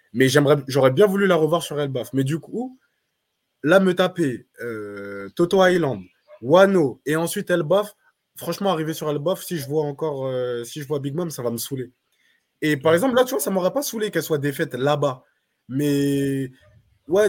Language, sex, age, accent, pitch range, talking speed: French, male, 20-39, French, 130-175 Hz, 195 wpm